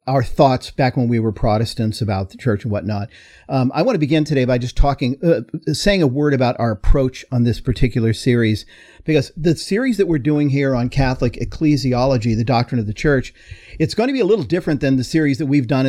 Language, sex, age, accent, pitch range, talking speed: English, male, 50-69, American, 120-145 Hz, 225 wpm